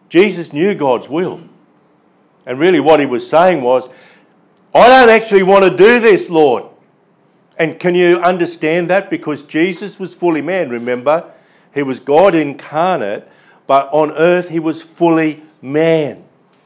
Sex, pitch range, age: male, 140-175 Hz, 50-69